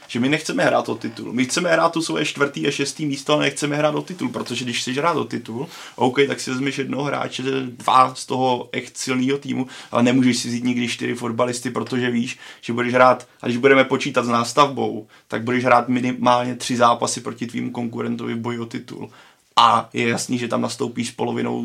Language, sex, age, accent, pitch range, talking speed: Czech, male, 20-39, native, 115-130 Hz, 210 wpm